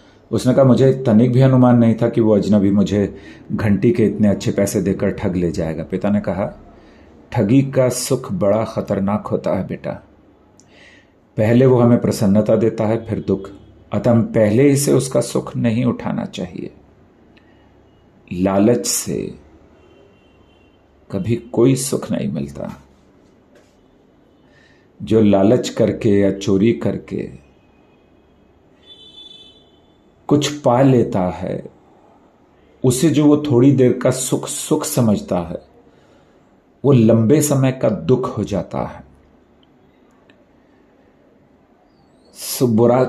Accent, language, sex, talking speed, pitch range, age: native, Hindi, male, 120 wpm, 95-120 Hz, 40-59